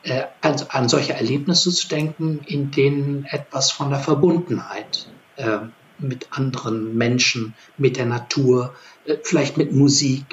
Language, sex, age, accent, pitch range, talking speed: German, male, 60-79, German, 120-145 Hz, 135 wpm